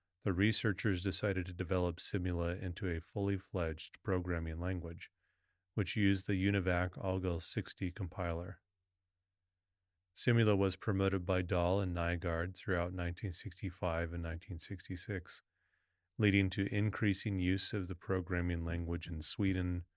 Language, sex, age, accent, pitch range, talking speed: English, male, 30-49, American, 85-95 Hz, 110 wpm